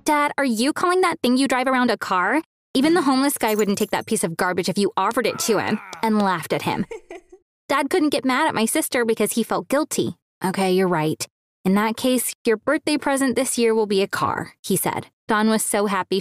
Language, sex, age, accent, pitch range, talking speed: English, female, 20-39, American, 210-285 Hz, 235 wpm